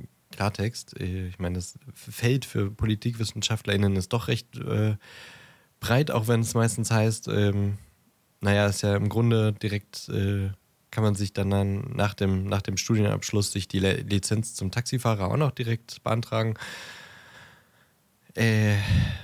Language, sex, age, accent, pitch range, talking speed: German, male, 20-39, German, 95-115 Hz, 145 wpm